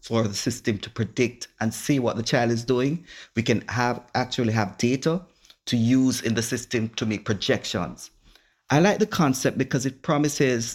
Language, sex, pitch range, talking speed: English, male, 110-130 Hz, 185 wpm